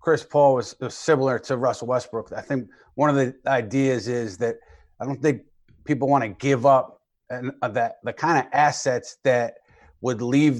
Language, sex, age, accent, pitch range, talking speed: English, male, 30-49, American, 120-140 Hz, 185 wpm